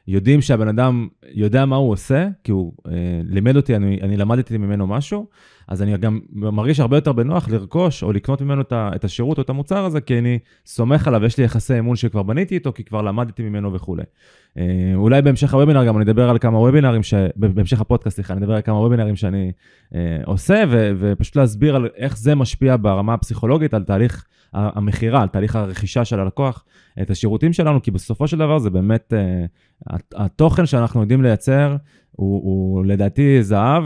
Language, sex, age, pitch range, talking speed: Hebrew, male, 20-39, 100-135 Hz, 190 wpm